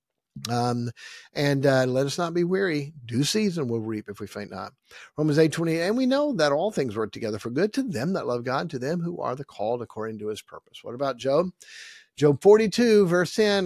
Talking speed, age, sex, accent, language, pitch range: 220 wpm, 50-69, male, American, English, 105-155 Hz